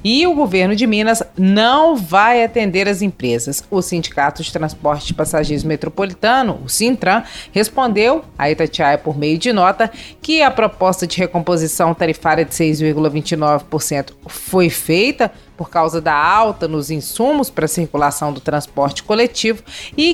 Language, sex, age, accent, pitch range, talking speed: Portuguese, female, 30-49, Brazilian, 165-225 Hz, 145 wpm